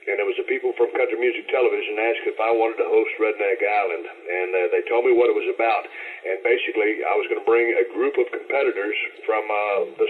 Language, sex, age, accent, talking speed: English, male, 50-69, American, 230 wpm